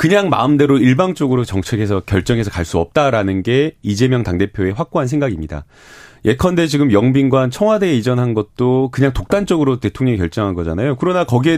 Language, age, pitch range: Korean, 30-49, 105-150 Hz